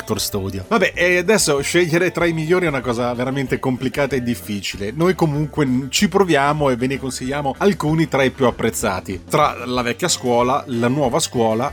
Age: 30-49